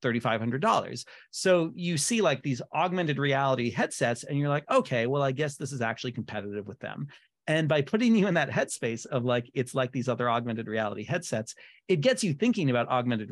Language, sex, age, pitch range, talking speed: English, male, 30-49, 115-150 Hz, 195 wpm